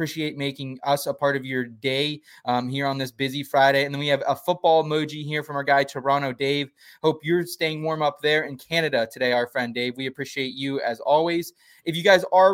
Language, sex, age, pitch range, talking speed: English, male, 20-39, 140-165 Hz, 230 wpm